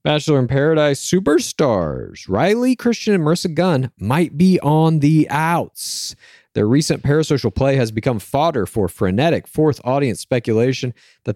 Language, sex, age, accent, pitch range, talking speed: English, male, 40-59, American, 105-155 Hz, 145 wpm